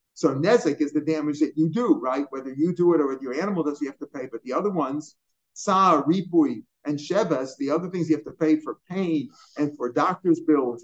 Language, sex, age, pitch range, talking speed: English, male, 50-69, 150-175 Hz, 235 wpm